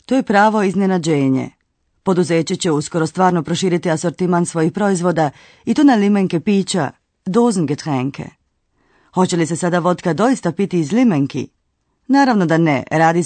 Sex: female